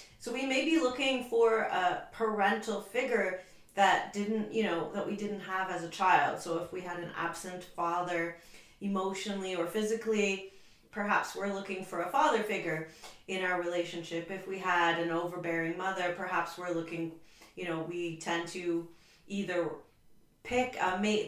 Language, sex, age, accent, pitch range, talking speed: English, female, 30-49, American, 170-215 Hz, 165 wpm